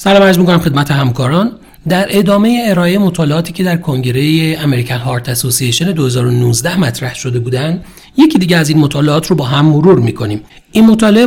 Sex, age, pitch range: male, 40-59, 145-195 Hz